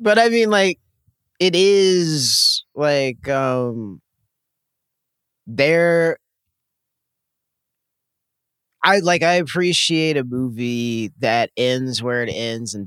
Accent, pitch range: American, 100-130 Hz